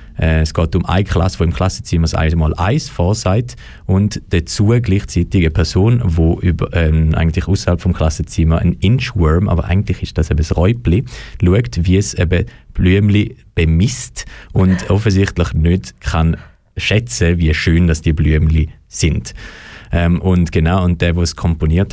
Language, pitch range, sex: German, 80-105 Hz, male